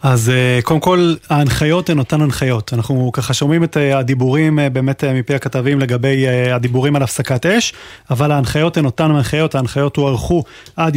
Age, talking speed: 30-49, 160 wpm